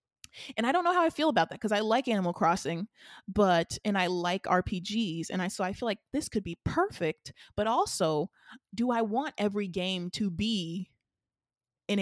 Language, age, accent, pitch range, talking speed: English, 20-39, American, 180-220 Hz, 195 wpm